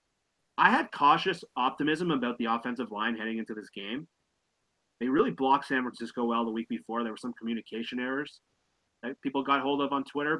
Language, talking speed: English, 190 wpm